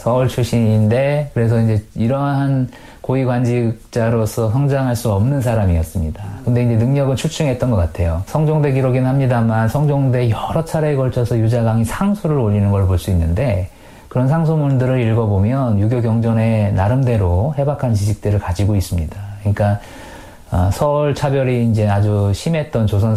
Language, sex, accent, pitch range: Korean, male, native, 100-130 Hz